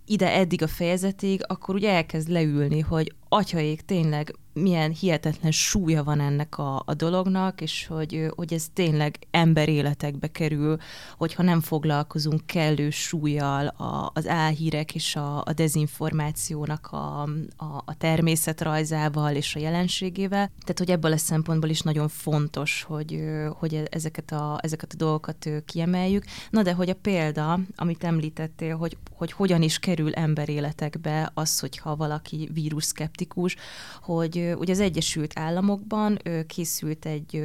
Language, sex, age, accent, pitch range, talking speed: English, female, 20-39, Finnish, 150-180 Hz, 135 wpm